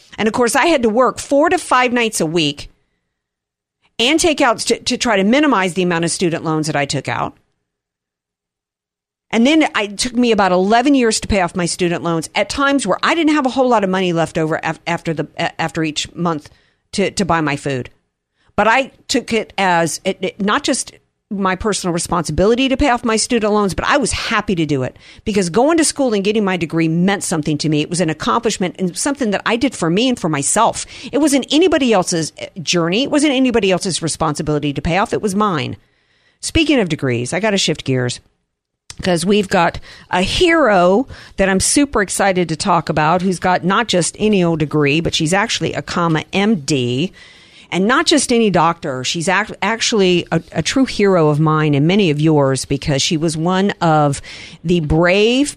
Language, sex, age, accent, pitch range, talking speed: English, female, 50-69, American, 160-230 Hz, 205 wpm